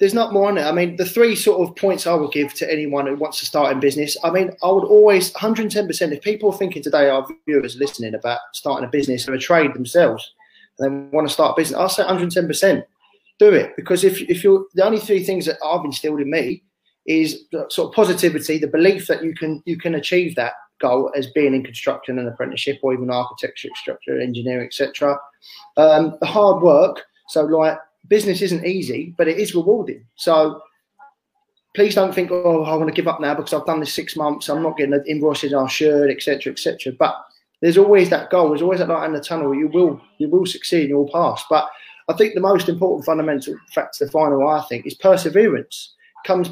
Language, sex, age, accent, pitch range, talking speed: English, male, 20-39, British, 150-200 Hz, 225 wpm